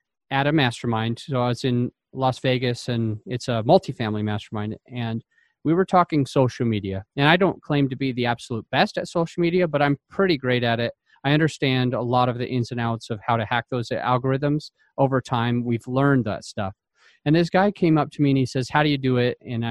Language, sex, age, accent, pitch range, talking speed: English, male, 30-49, American, 125-150 Hz, 230 wpm